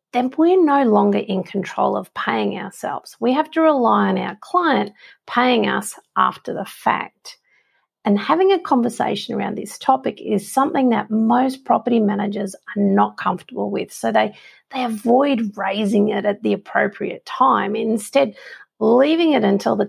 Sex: female